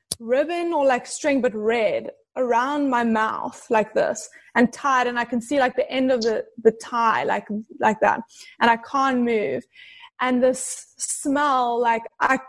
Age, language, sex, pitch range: 20-39, English, female, 230-280 Hz